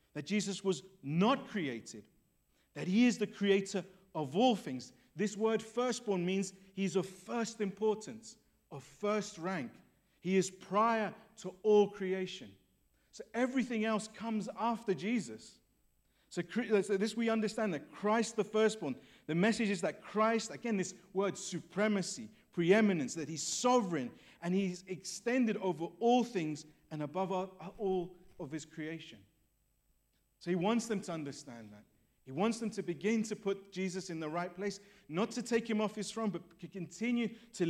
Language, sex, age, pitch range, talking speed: English, male, 50-69, 170-215 Hz, 160 wpm